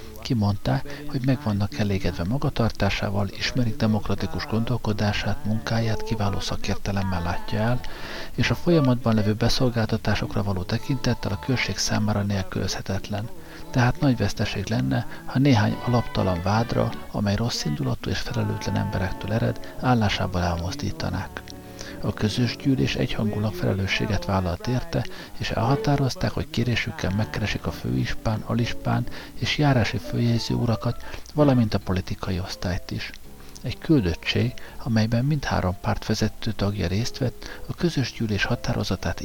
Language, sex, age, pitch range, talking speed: Hungarian, male, 50-69, 100-120 Hz, 120 wpm